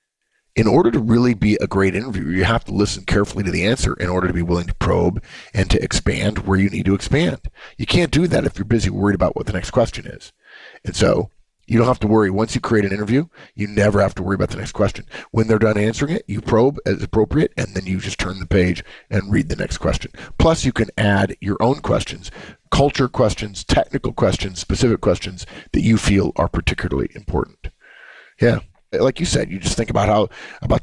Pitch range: 100-115 Hz